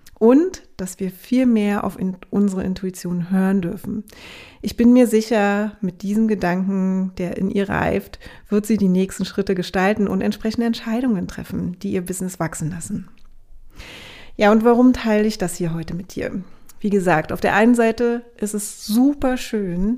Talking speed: 170 wpm